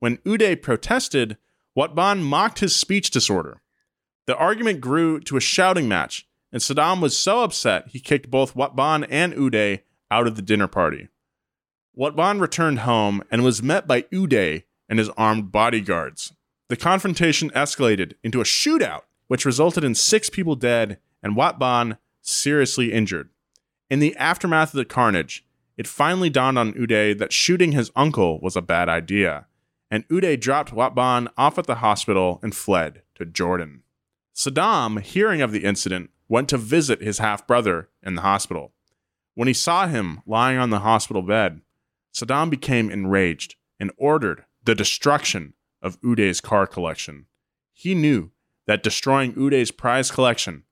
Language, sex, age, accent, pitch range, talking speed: English, male, 30-49, American, 105-145 Hz, 155 wpm